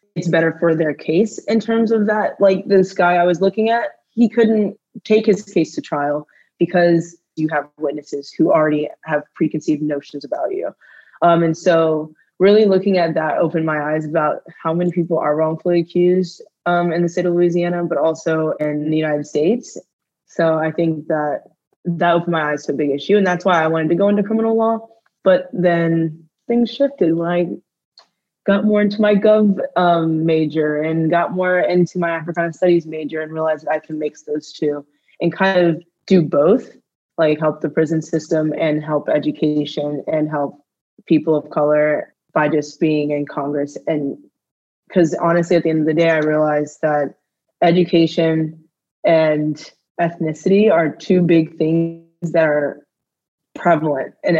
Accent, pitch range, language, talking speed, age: American, 155-180 Hz, English, 175 wpm, 20-39